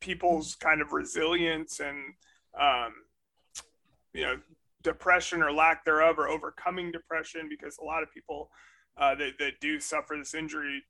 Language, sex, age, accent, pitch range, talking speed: English, male, 30-49, American, 145-170 Hz, 150 wpm